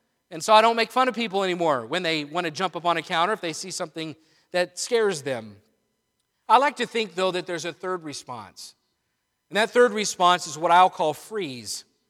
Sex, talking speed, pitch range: male, 220 wpm, 180-230 Hz